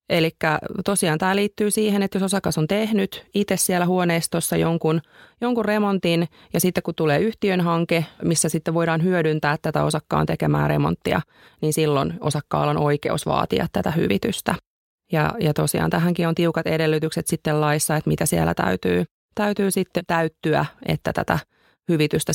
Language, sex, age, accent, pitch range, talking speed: Finnish, female, 30-49, native, 150-180 Hz, 150 wpm